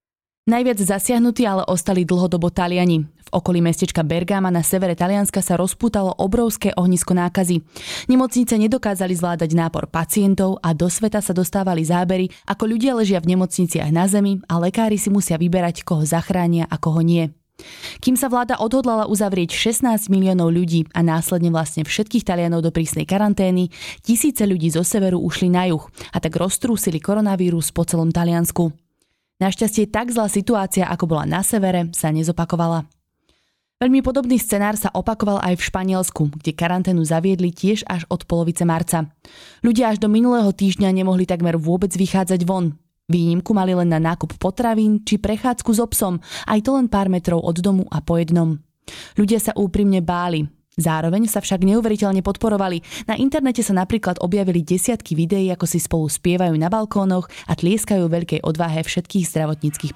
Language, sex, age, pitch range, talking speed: Slovak, female, 20-39, 170-205 Hz, 160 wpm